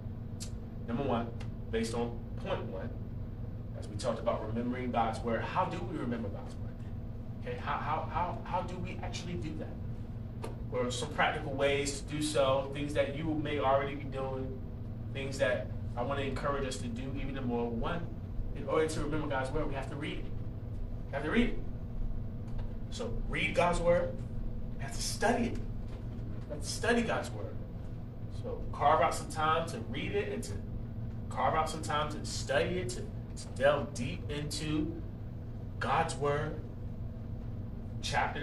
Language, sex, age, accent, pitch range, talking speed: English, male, 30-49, American, 110-125 Hz, 175 wpm